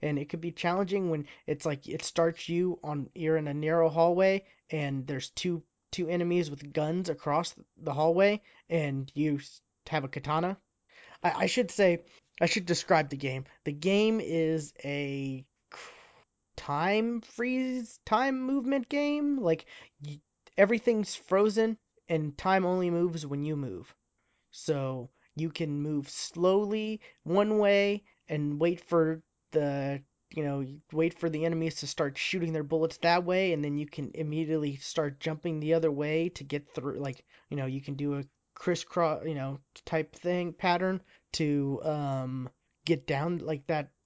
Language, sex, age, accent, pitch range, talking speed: English, male, 20-39, American, 145-175 Hz, 160 wpm